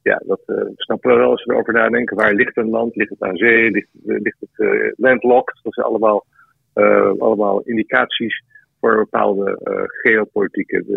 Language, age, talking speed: Dutch, 50-69, 175 wpm